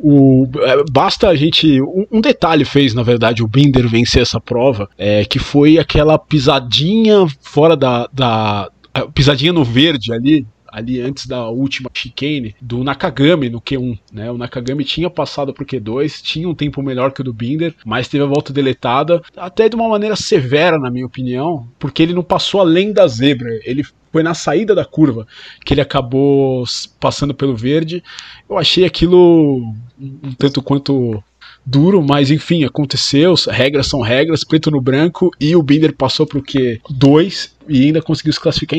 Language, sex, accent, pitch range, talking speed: Portuguese, male, Brazilian, 125-155 Hz, 170 wpm